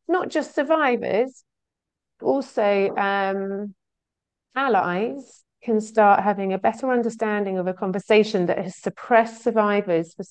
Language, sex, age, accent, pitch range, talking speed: English, female, 40-59, British, 170-210 Hz, 115 wpm